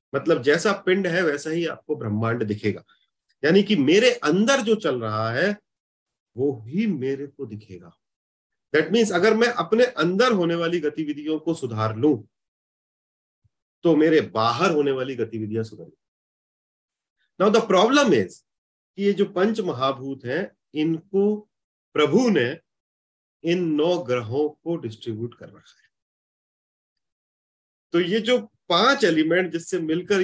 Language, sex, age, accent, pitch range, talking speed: Hindi, male, 40-59, native, 115-180 Hz, 135 wpm